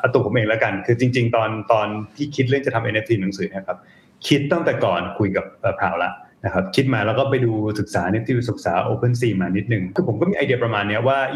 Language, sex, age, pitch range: Thai, male, 20-39, 105-135 Hz